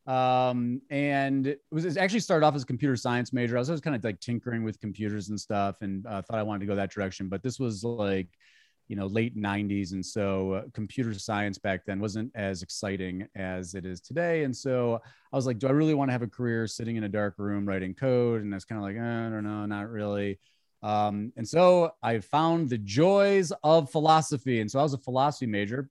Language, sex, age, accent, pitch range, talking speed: English, male, 30-49, American, 100-130 Hz, 240 wpm